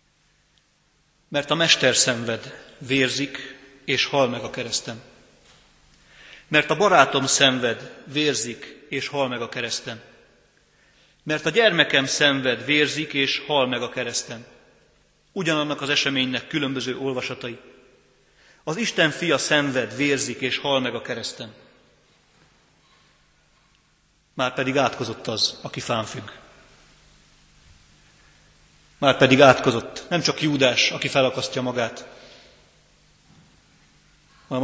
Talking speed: 105 wpm